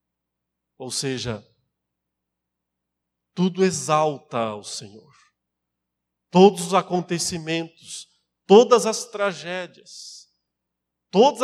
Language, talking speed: Portuguese, 70 wpm